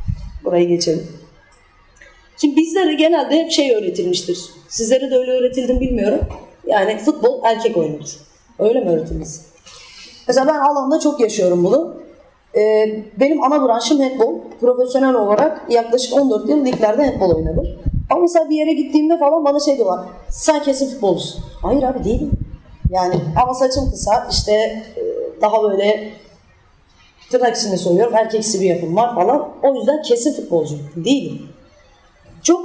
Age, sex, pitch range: 30-49, female, 190-290 Hz